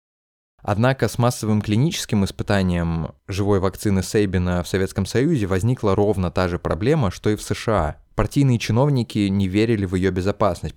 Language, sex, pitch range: Russian, male, 95-120 Hz